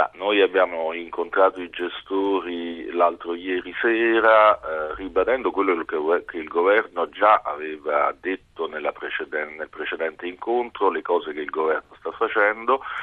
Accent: native